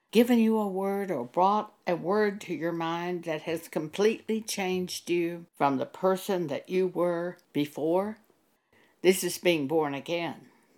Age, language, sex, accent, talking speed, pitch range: 60-79, English, female, American, 155 wpm, 160-200 Hz